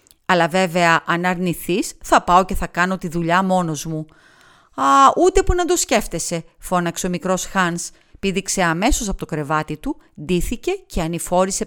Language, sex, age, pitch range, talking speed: Greek, female, 40-59, 170-215 Hz, 165 wpm